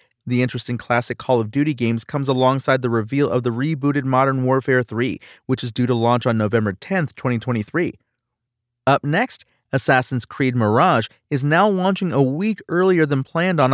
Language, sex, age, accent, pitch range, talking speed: English, male, 30-49, American, 120-155 Hz, 175 wpm